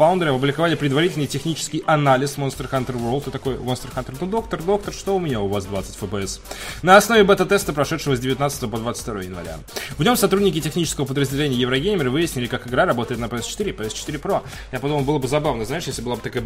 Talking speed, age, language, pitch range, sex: 200 wpm, 20-39, Russian, 125-150 Hz, male